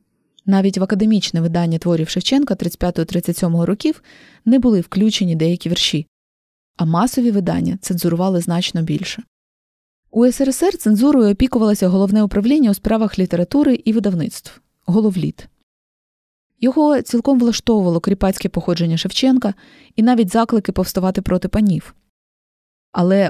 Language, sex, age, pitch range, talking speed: Ukrainian, female, 20-39, 180-225 Hz, 115 wpm